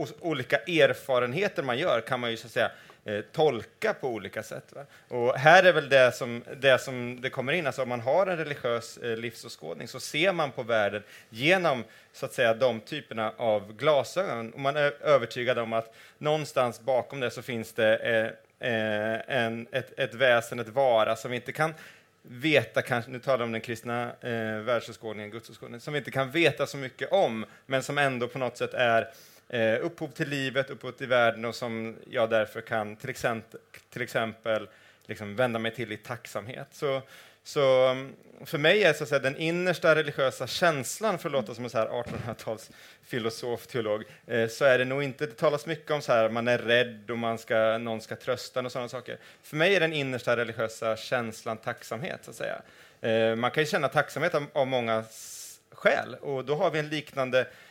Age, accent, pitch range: 30-49, Swedish, 115-140 Hz